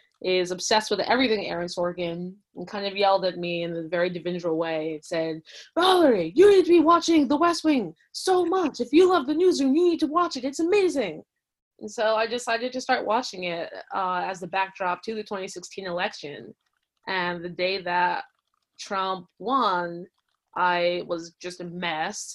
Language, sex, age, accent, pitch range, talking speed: English, female, 20-39, American, 175-225 Hz, 185 wpm